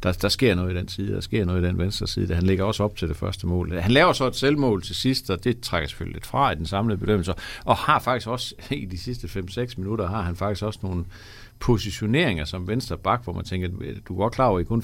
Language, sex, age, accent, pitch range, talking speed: Danish, male, 60-79, native, 90-115 Hz, 265 wpm